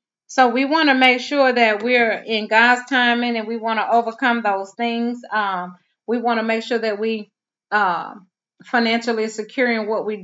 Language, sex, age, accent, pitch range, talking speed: English, female, 30-49, American, 195-225 Hz, 180 wpm